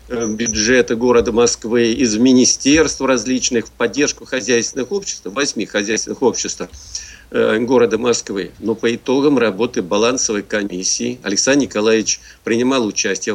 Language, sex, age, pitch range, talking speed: Russian, male, 50-69, 115-140 Hz, 110 wpm